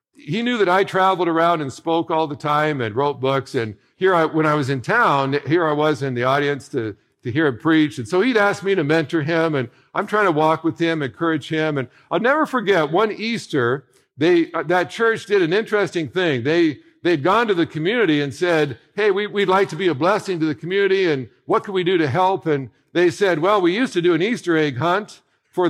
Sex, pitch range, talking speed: male, 140-185 Hz, 240 wpm